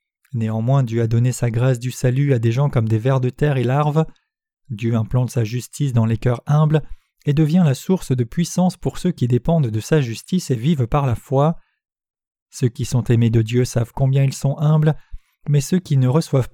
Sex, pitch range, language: male, 120-160 Hz, French